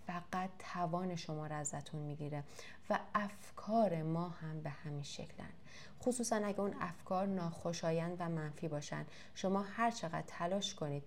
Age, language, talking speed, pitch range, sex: 30-49, Persian, 140 wpm, 170-245 Hz, female